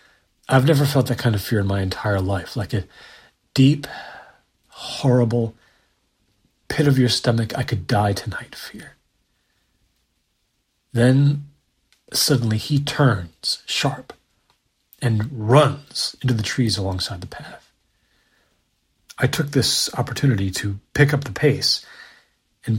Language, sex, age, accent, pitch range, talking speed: English, male, 40-59, American, 100-130 Hz, 105 wpm